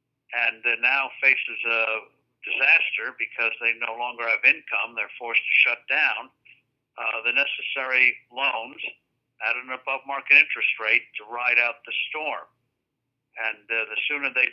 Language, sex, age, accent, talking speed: English, male, 60-79, American, 150 wpm